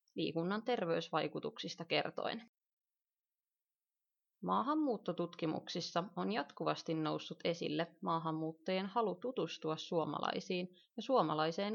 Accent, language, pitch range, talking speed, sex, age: native, Finnish, 160-215 Hz, 70 wpm, female, 30-49